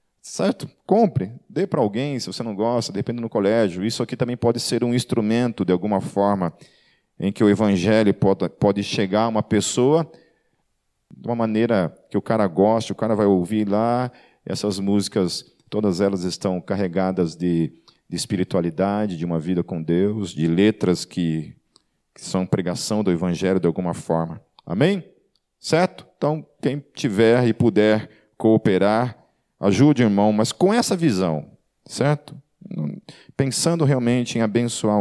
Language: Portuguese